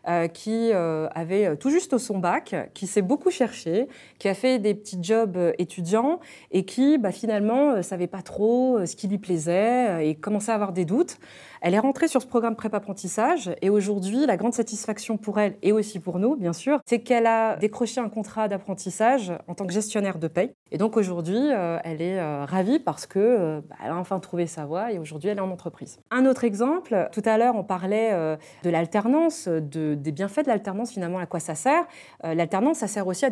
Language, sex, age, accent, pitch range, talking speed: French, female, 30-49, French, 180-240 Hz, 225 wpm